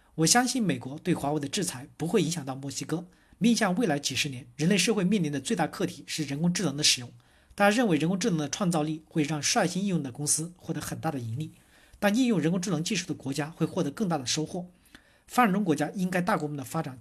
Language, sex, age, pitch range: Chinese, male, 50-69, 145-185 Hz